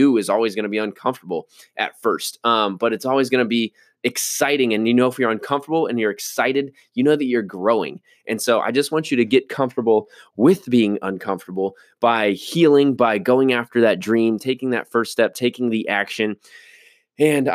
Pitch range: 105-125 Hz